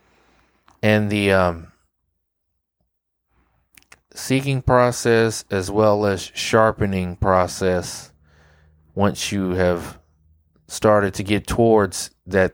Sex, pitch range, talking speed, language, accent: male, 90-110 Hz, 85 wpm, English, American